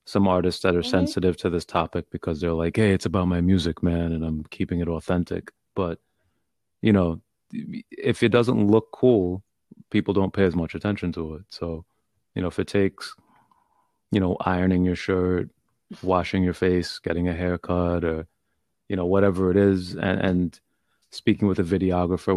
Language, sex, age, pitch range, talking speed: English, male, 30-49, 85-100 Hz, 180 wpm